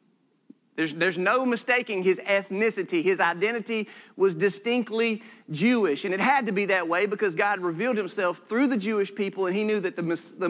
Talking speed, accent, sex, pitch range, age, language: 185 wpm, American, male, 190-240 Hz, 40-59, English